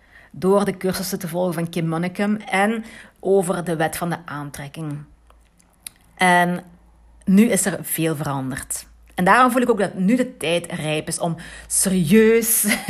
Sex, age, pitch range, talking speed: female, 40-59, 165-210 Hz, 160 wpm